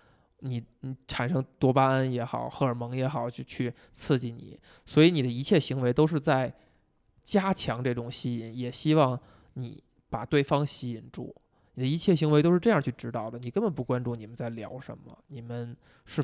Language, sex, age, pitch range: Chinese, male, 20-39, 125-160 Hz